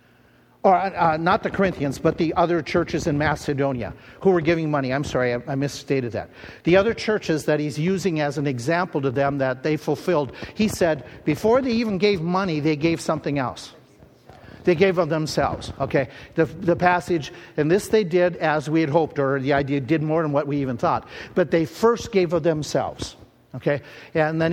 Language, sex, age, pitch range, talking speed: English, male, 50-69, 145-185 Hz, 200 wpm